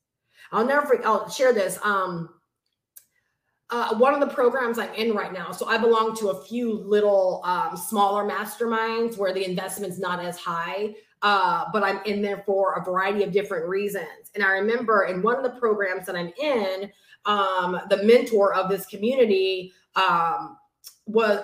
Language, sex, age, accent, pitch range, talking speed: English, female, 30-49, American, 190-245 Hz, 175 wpm